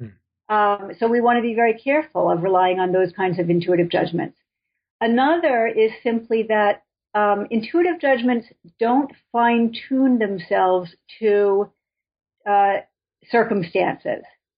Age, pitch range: 50-69, 185-230 Hz